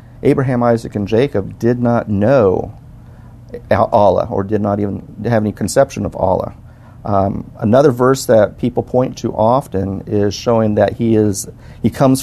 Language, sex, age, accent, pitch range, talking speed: English, male, 50-69, American, 105-125 Hz, 155 wpm